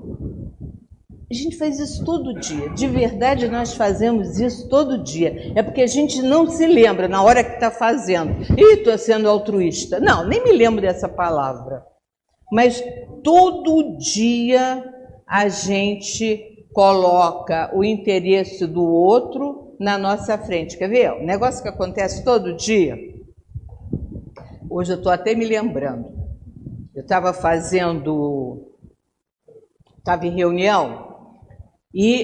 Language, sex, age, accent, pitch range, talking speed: Portuguese, female, 50-69, Brazilian, 175-240 Hz, 130 wpm